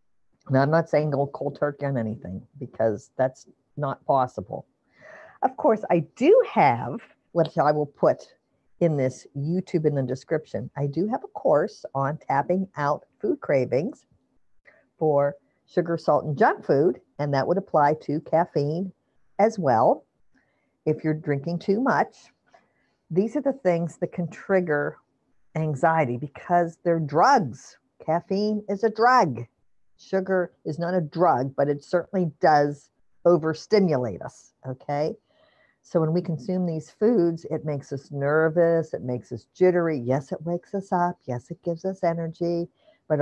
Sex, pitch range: female, 140-175 Hz